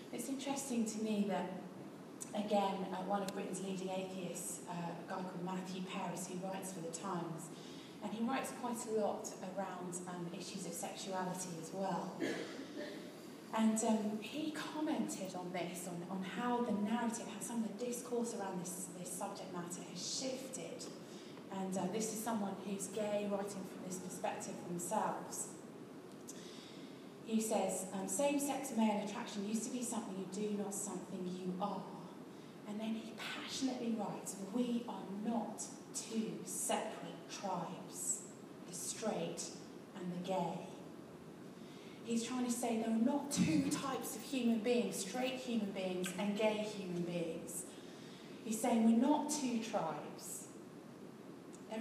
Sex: female